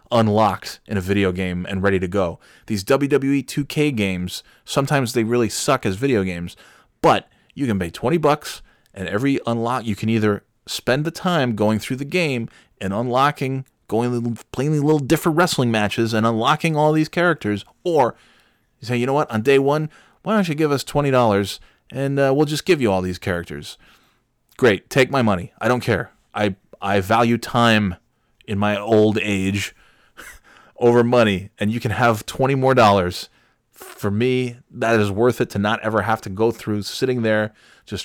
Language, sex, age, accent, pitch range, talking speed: English, male, 20-39, American, 100-125 Hz, 185 wpm